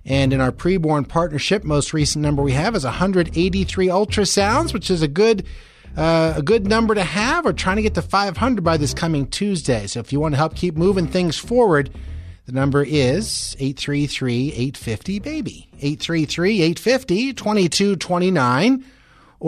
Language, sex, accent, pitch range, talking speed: English, male, American, 130-180 Hz, 150 wpm